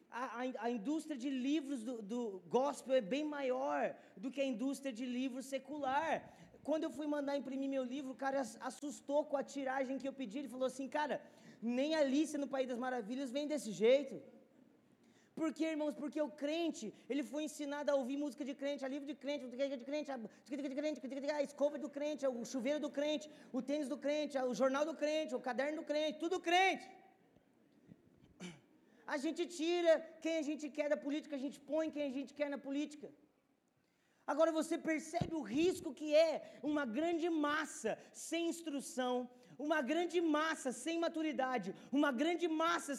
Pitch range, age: 265-310 Hz, 20-39